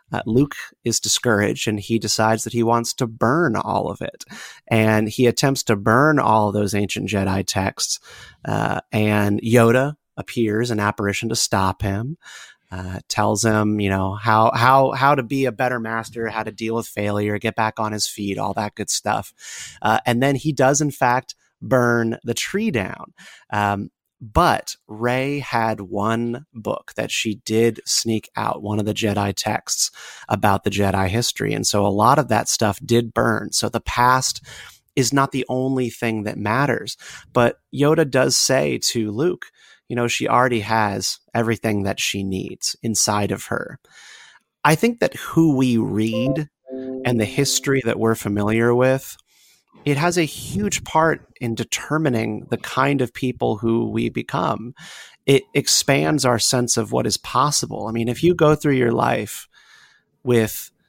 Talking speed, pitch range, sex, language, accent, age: 170 wpm, 105-130 Hz, male, English, American, 30-49